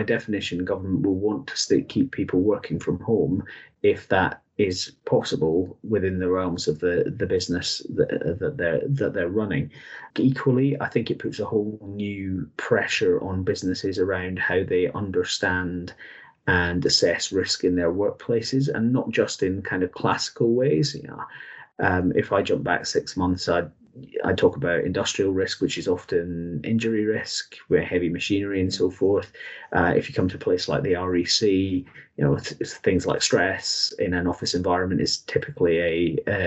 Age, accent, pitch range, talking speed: 30-49, British, 90-115 Hz, 180 wpm